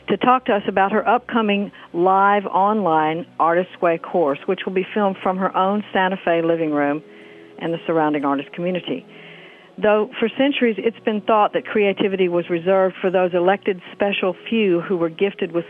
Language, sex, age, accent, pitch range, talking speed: English, female, 50-69, American, 170-210 Hz, 180 wpm